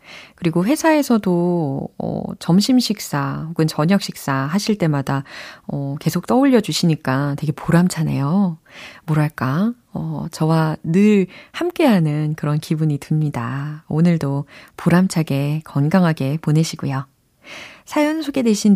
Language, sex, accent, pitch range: Korean, female, native, 150-235 Hz